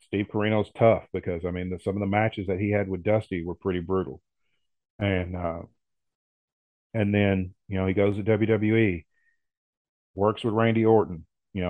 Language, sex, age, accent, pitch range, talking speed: English, male, 40-59, American, 90-110 Hz, 170 wpm